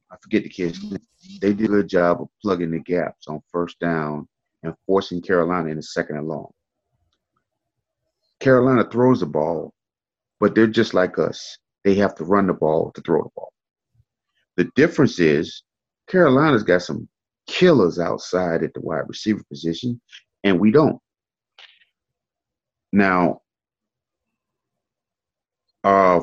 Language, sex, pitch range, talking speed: English, male, 85-105 Hz, 140 wpm